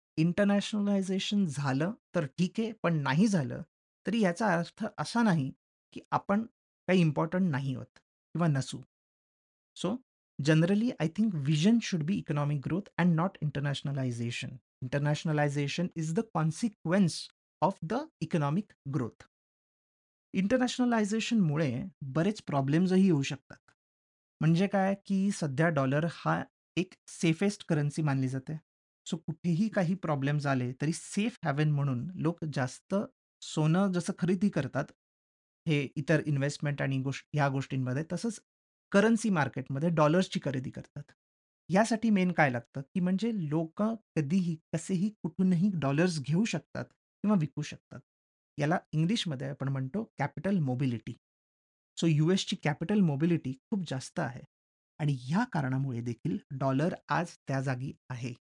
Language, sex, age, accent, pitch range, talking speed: Marathi, male, 30-49, native, 140-195 Hz, 125 wpm